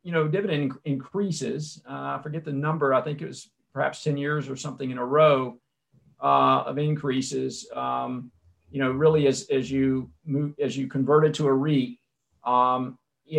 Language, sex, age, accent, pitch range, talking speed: English, male, 50-69, American, 135-160 Hz, 190 wpm